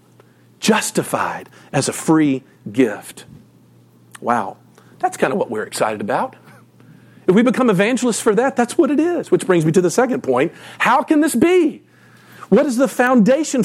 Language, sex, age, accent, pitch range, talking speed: English, male, 50-69, American, 180-250 Hz, 165 wpm